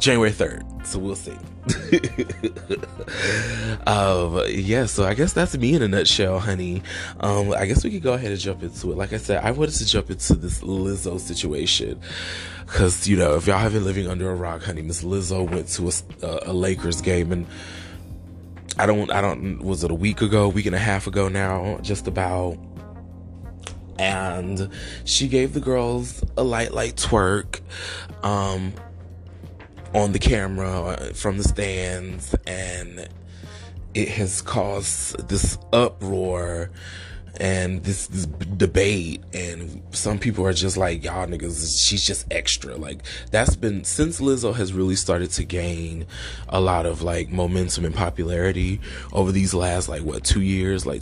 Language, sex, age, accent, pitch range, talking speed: English, male, 20-39, American, 85-100 Hz, 160 wpm